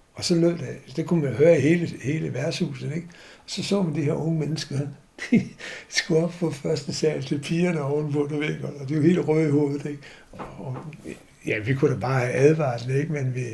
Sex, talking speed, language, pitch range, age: male, 230 wpm, Danish, 135-165 Hz, 60-79